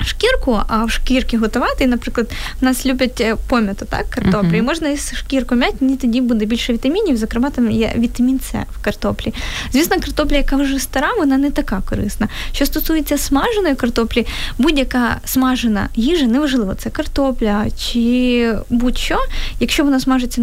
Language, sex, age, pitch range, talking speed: Ukrainian, female, 20-39, 230-270 Hz, 160 wpm